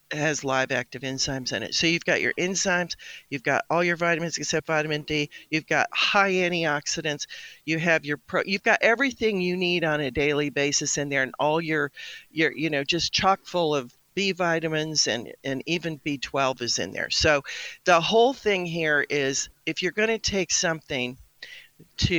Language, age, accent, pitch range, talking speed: English, 50-69, American, 140-175 Hz, 185 wpm